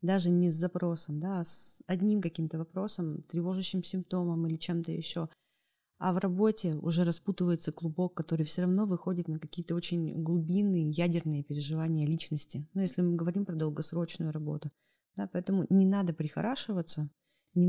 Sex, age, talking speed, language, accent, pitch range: female, 20-39, 155 wpm, Russian, native, 155-185 Hz